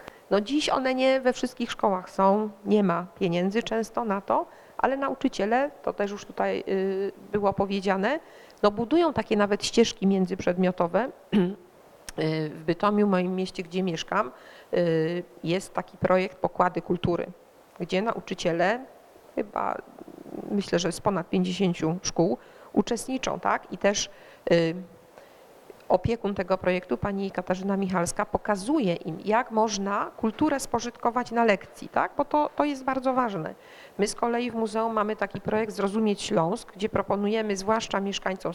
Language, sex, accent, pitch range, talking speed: Polish, female, native, 185-235 Hz, 135 wpm